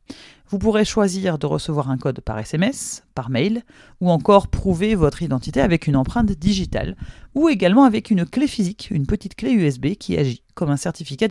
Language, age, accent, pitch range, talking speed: French, 40-59, French, 145-210 Hz, 185 wpm